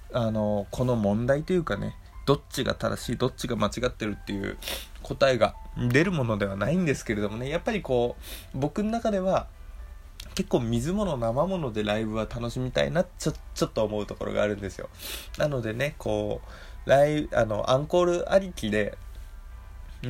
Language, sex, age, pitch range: Japanese, male, 20-39, 105-150 Hz